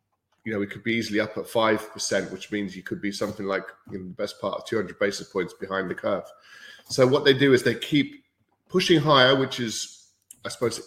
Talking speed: 215 wpm